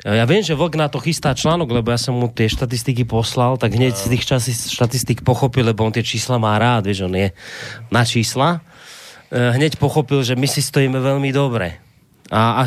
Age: 30-49